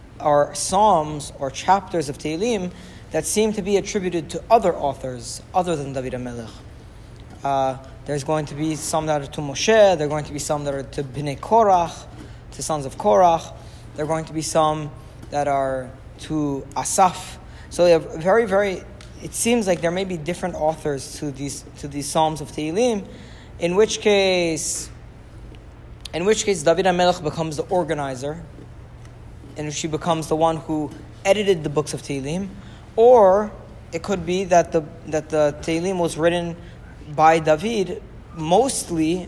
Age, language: 20-39, English